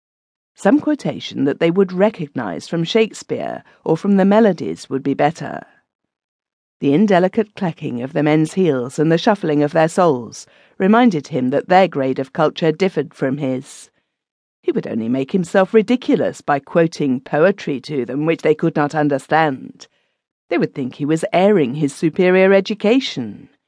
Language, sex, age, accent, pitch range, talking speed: English, female, 50-69, British, 150-200 Hz, 160 wpm